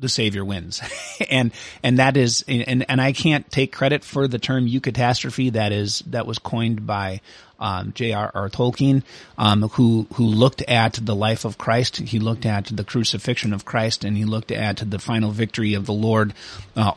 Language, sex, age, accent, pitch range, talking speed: English, male, 30-49, American, 105-130 Hz, 190 wpm